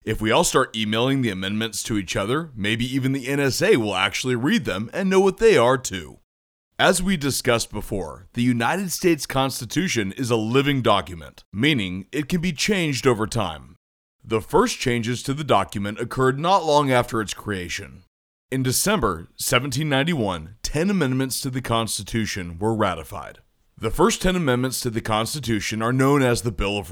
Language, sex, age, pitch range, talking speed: English, male, 30-49, 105-135 Hz, 175 wpm